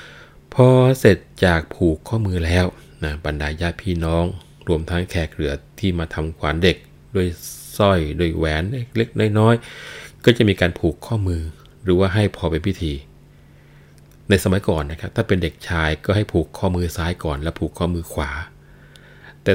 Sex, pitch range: male, 80-95 Hz